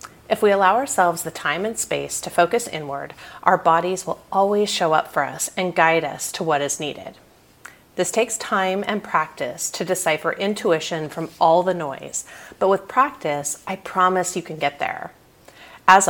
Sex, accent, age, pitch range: female, American, 30-49, 155-200 Hz